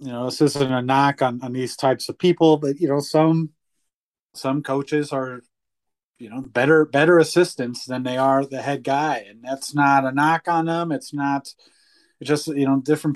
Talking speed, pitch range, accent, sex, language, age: 200 wpm, 135-155 Hz, American, male, English, 30-49